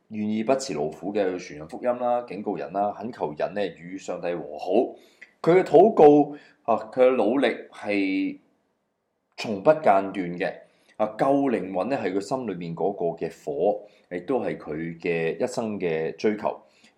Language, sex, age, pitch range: Chinese, male, 30-49, 90-140 Hz